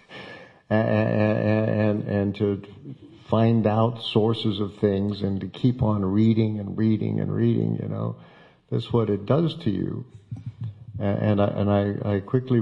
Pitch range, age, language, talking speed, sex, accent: 100-120 Hz, 50-69, English, 155 wpm, male, American